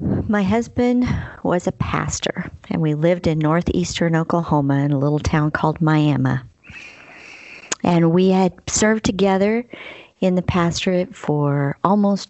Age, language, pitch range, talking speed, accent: 50-69, English, 145-185 Hz, 130 wpm, American